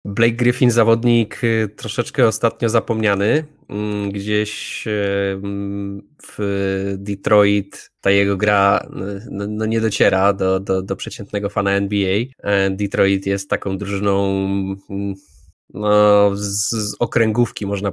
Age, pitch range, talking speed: 20-39, 100-110 Hz, 100 wpm